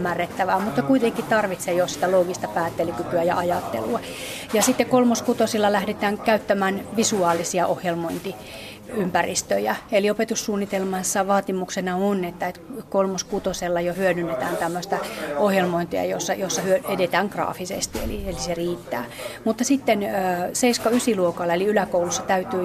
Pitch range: 175-205 Hz